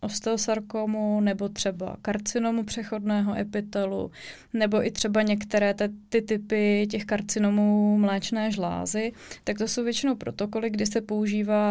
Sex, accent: female, native